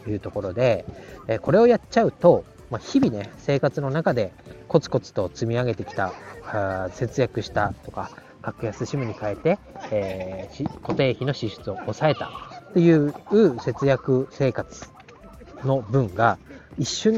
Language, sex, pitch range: Japanese, male, 105-140 Hz